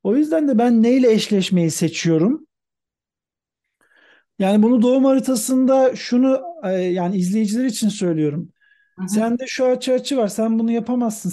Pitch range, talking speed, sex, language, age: 160-235 Hz, 125 wpm, male, Turkish, 50-69